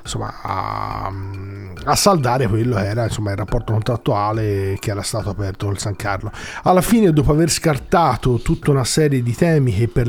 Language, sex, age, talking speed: Italian, male, 40-59, 175 wpm